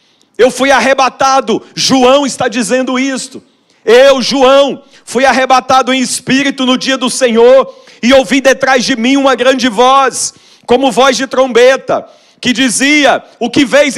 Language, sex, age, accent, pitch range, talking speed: Portuguese, male, 50-69, Brazilian, 260-320 Hz, 145 wpm